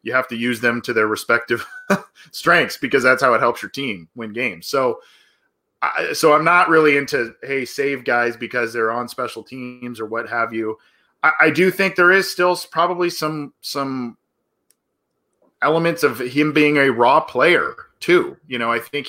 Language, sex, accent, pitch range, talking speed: English, male, American, 120-150 Hz, 180 wpm